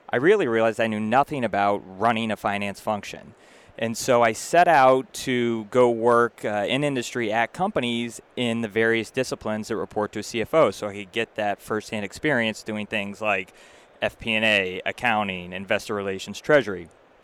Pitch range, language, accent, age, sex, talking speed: 105-120 Hz, English, American, 30-49, male, 165 wpm